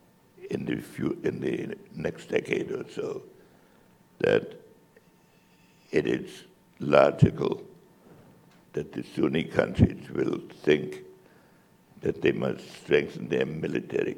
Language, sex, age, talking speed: English, male, 60-79, 95 wpm